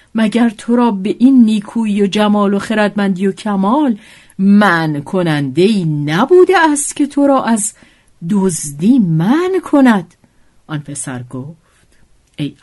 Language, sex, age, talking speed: Persian, female, 50-69, 130 wpm